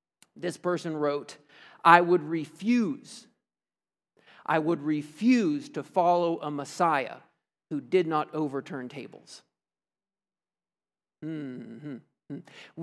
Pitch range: 145-175 Hz